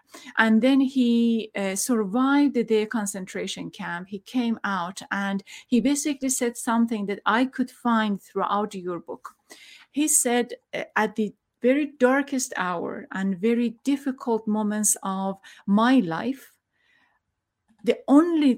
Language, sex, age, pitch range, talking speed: English, female, 30-49, 210-255 Hz, 130 wpm